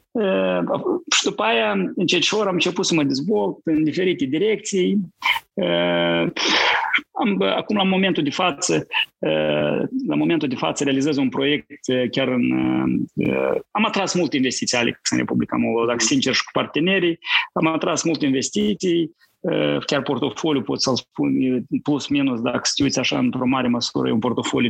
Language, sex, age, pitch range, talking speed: Romanian, male, 30-49, 135-205 Hz, 160 wpm